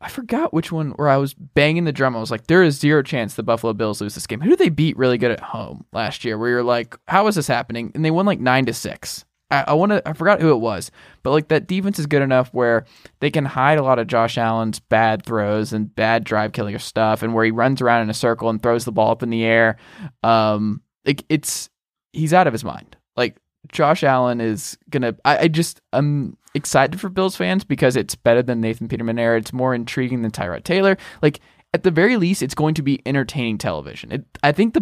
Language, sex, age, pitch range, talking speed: English, male, 20-39, 115-155 Hz, 245 wpm